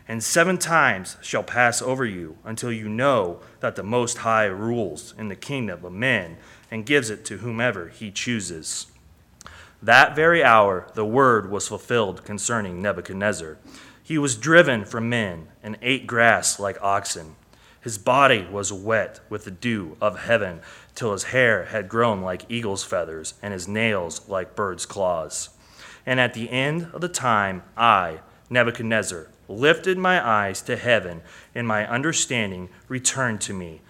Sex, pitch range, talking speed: male, 100-120 Hz, 160 wpm